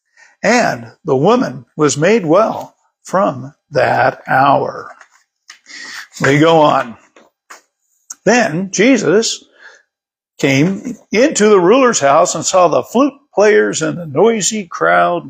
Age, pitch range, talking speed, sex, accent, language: 60-79, 145-210 Hz, 110 wpm, male, American, English